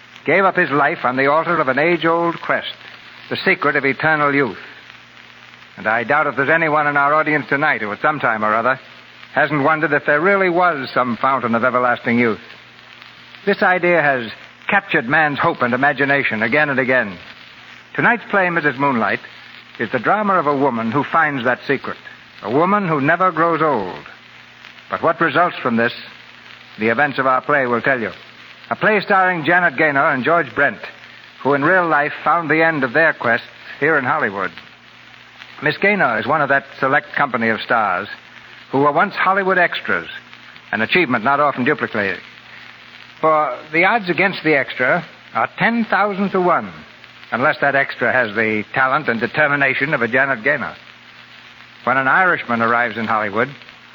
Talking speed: 175 wpm